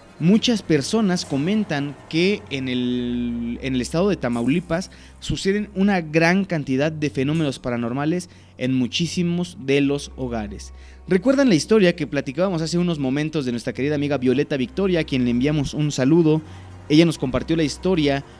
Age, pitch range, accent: 30-49, 130-170 Hz, Mexican